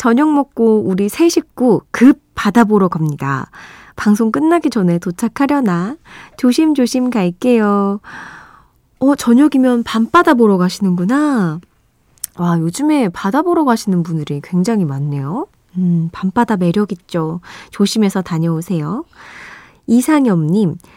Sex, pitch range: female, 175-240 Hz